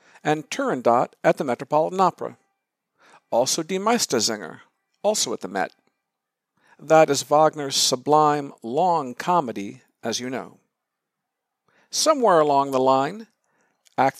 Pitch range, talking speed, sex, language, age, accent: 130-175 Hz, 115 wpm, male, English, 50-69, American